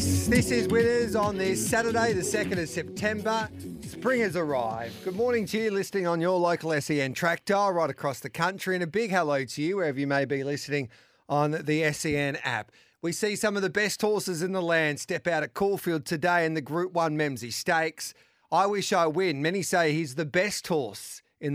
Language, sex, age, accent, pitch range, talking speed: English, male, 40-59, Australian, 145-185 Hz, 205 wpm